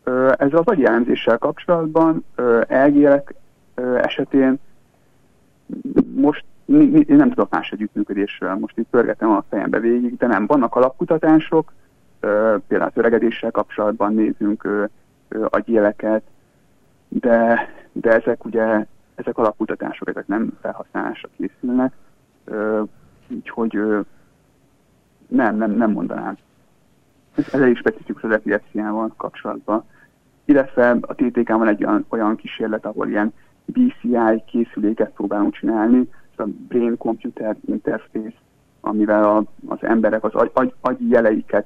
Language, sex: Hungarian, male